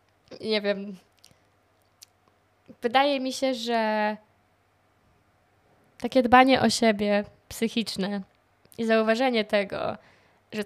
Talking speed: 85 wpm